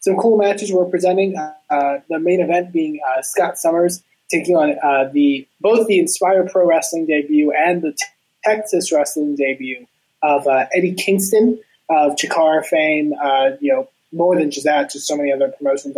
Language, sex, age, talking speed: English, male, 20-39, 185 wpm